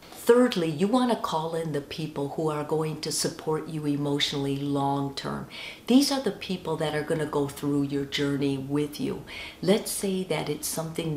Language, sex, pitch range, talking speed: English, female, 145-180 Hz, 190 wpm